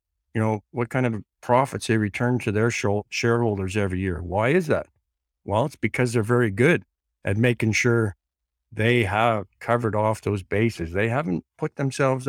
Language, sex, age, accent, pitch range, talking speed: English, male, 50-69, American, 95-120 Hz, 175 wpm